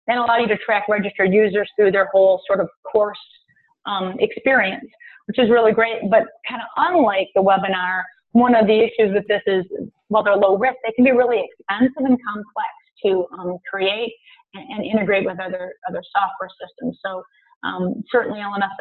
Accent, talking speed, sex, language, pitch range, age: American, 185 wpm, female, English, 190-235 Hz, 30-49